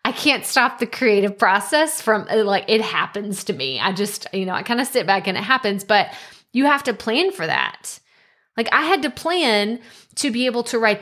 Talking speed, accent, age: 225 wpm, American, 20-39